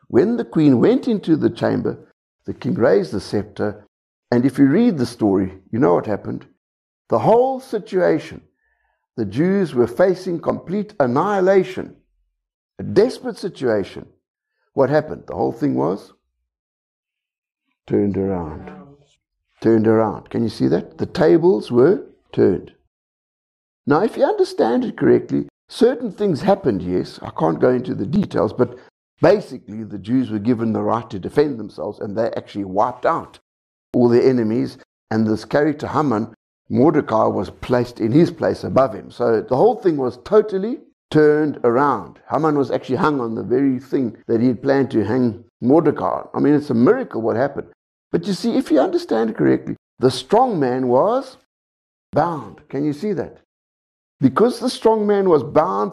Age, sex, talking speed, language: 60-79, male, 160 wpm, English